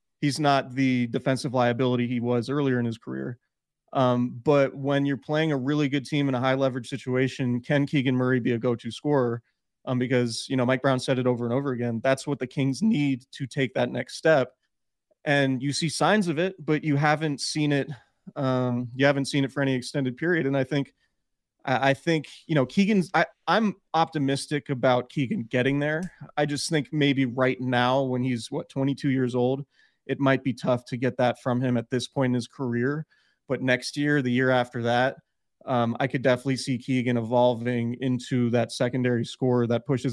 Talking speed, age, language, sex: 205 wpm, 30-49, English, male